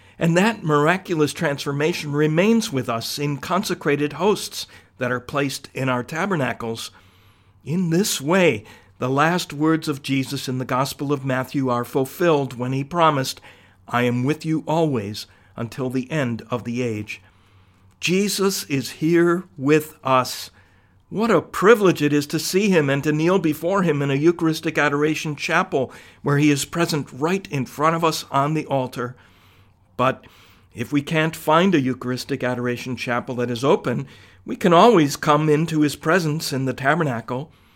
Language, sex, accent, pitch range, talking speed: English, male, American, 120-155 Hz, 160 wpm